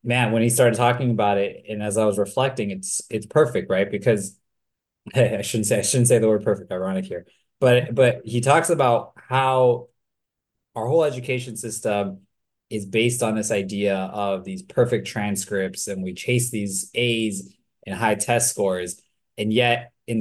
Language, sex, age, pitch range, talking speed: English, male, 20-39, 100-120 Hz, 175 wpm